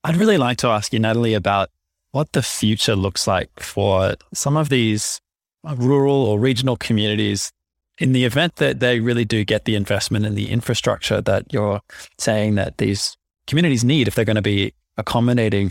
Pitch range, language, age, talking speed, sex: 100-120 Hz, English, 20-39, 180 wpm, male